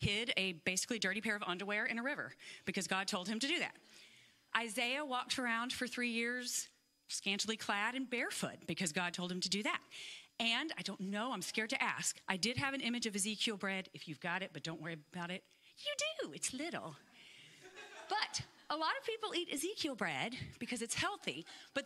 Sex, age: female, 40-59